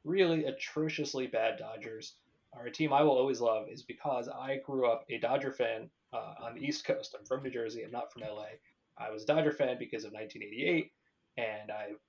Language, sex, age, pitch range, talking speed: English, male, 20-39, 115-150 Hz, 200 wpm